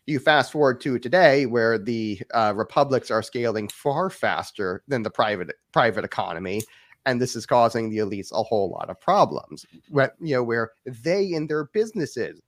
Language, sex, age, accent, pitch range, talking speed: English, male, 30-49, American, 110-135 Hz, 180 wpm